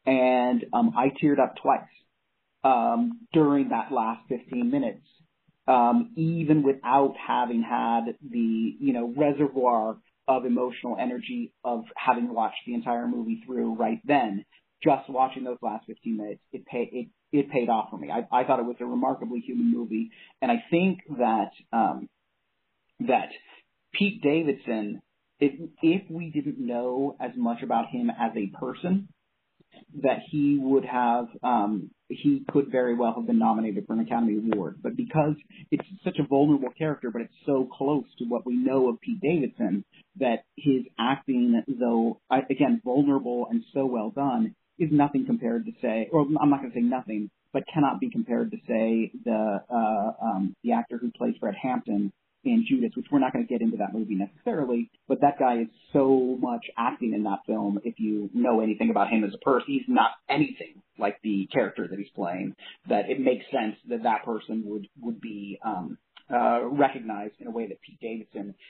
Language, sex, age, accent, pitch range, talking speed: English, male, 40-59, American, 115-165 Hz, 180 wpm